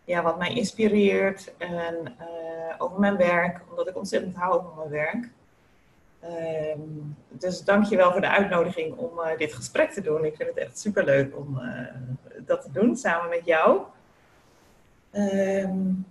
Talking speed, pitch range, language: 170 wpm, 145-195 Hz, Dutch